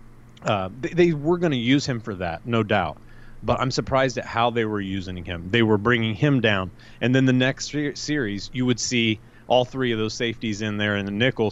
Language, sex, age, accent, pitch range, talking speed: English, male, 30-49, American, 110-125 Hz, 230 wpm